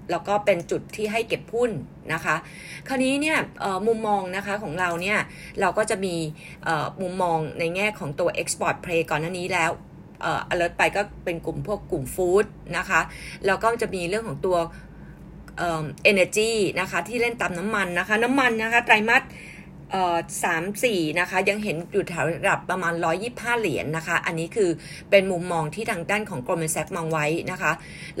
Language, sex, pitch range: Thai, female, 170-215 Hz